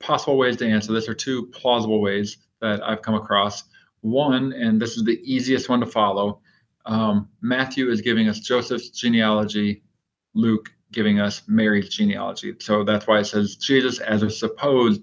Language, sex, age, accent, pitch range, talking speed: English, male, 40-59, American, 105-120 Hz, 170 wpm